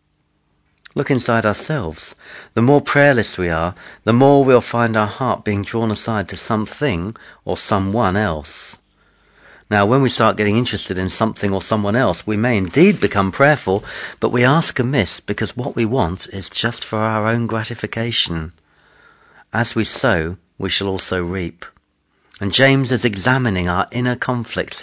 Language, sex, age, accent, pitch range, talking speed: English, male, 40-59, British, 95-125 Hz, 160 wpm